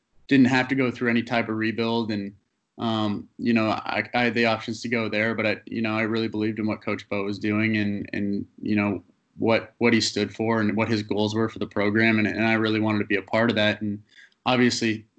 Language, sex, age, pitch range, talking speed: English, male, 20-39, 105-115 Hz, 255 wpm